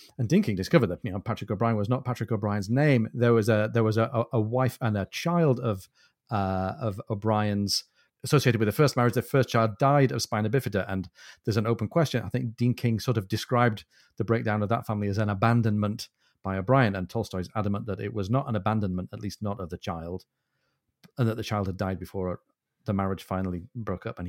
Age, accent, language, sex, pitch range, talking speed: 40-59, British, English, male, 100-125 Hz, 220 wpm